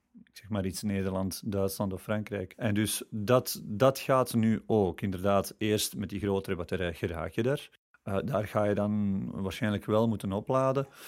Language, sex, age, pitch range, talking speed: French, male, 30-49, 100-120 Hz, 180 wpm